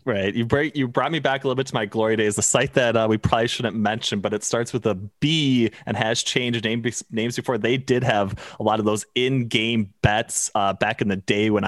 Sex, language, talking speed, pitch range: male, English, 245 wpm, 105-125 Hz